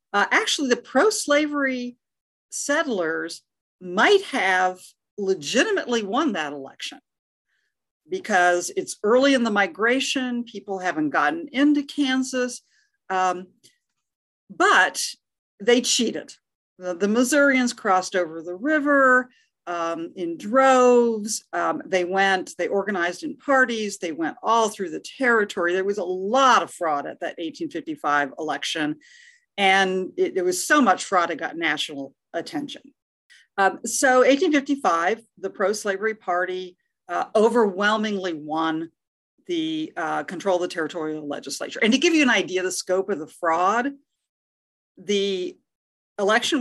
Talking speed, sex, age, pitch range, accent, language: 130 wpm, female, 50-69, 180-260 Hz, American, English